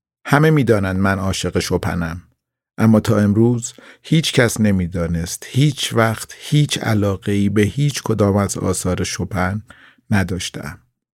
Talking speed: 130 wpm